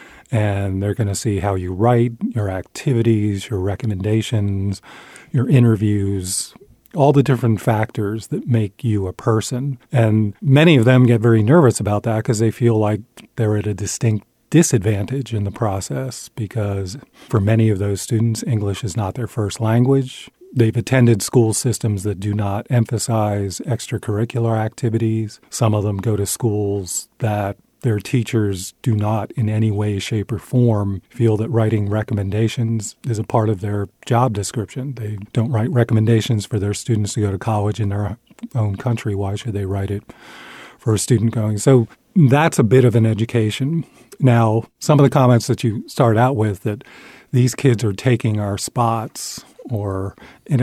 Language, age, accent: English, 40-59, American